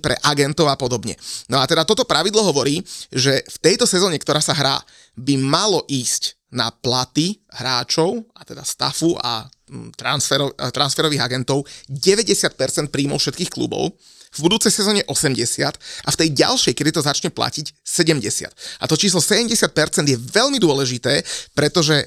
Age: 30-49